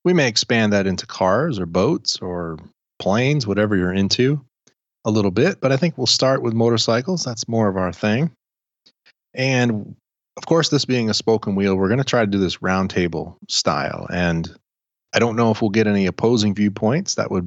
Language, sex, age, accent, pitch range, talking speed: English, male, 30-49, American, 95-115 Hz, 195 wpm